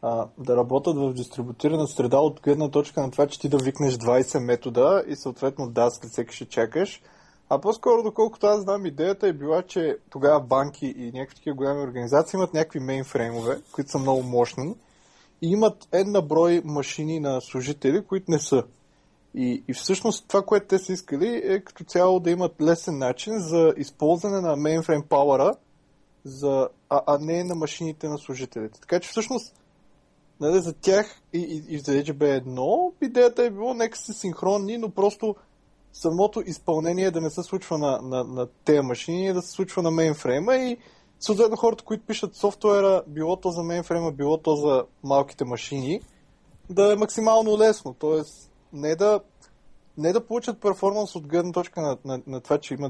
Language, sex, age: Bulgarian, male, 20-39